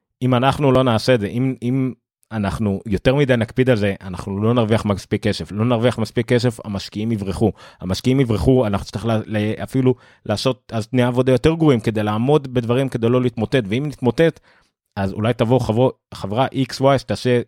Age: 30-49